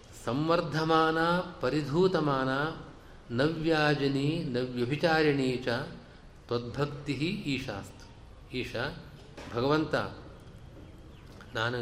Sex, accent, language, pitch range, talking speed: male, native, Kannada, 125-160 Hz, 50 wpm